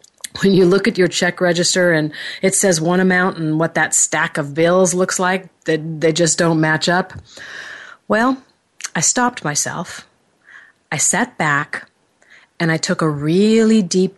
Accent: American